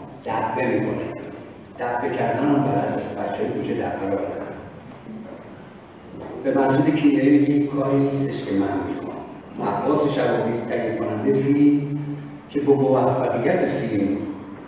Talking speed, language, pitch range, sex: 100 wpm, Persian, 125-145 Hz, male